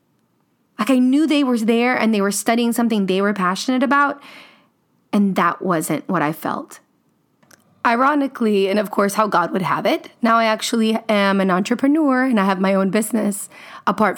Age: 20-39